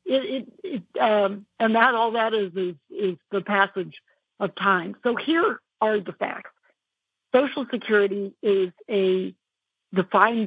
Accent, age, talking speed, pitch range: American, 60-79, 145 wpm, 185-210 Hz